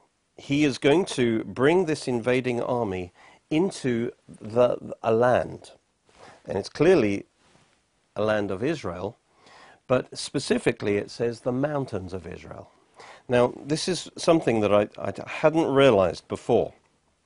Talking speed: 130 wpm